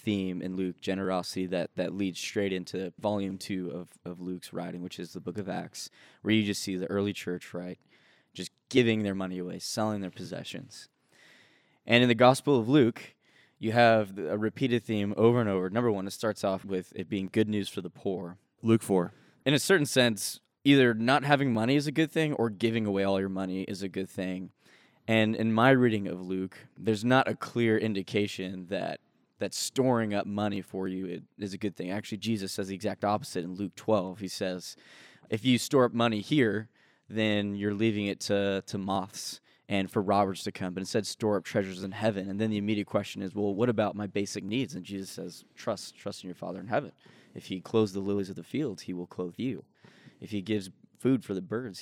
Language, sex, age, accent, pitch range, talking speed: English, male, 10-29, American, 95-110 Hz, 220 wpm